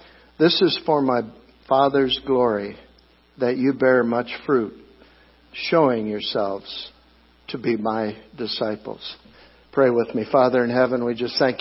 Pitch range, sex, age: 115-140 Hz, male, 60-79